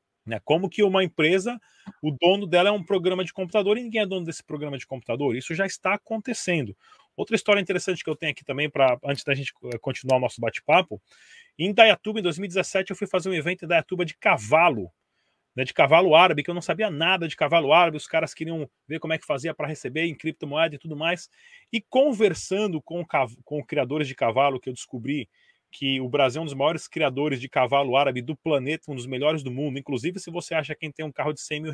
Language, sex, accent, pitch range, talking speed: Portuguese, male, Brazilian, 150-185 Hz, 225 wpm